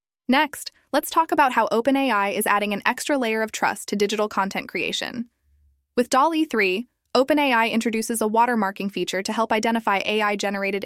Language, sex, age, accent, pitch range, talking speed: English, female, 10-29, American, 205-250 Hz, 160 wpm